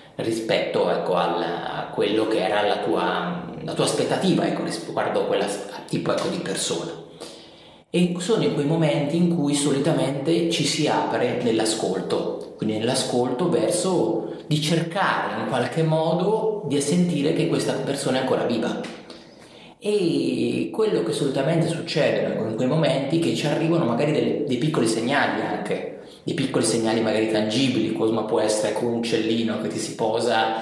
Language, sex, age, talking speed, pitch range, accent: Italian, male, 30-49, 155 wpm, 120-170 Hz, native